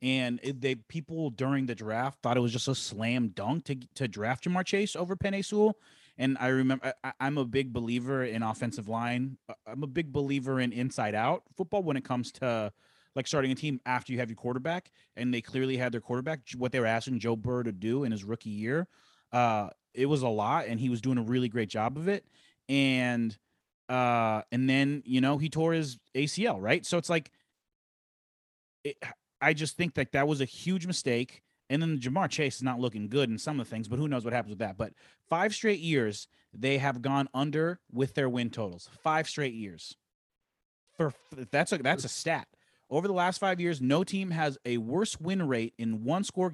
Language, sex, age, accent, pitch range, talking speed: English, male, 30-49, American, 120-160 Hz, 210 wpm